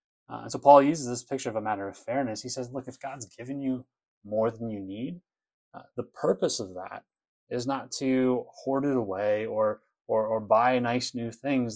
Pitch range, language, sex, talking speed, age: 110-135 Hz, English, male, 210 wpm, 30-49